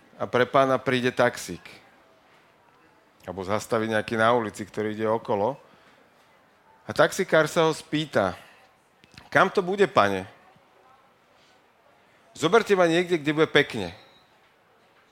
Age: 40-59